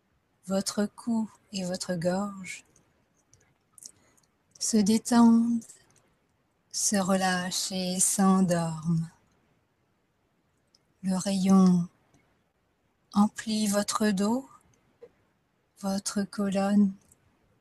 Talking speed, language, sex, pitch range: 60 wpm, French, female, 180-205 Hz